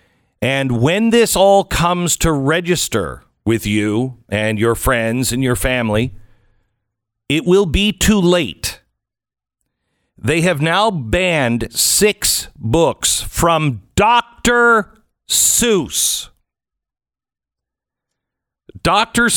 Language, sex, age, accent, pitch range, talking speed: English, male, 40-59, American, 110-175 Hz, 95 wpm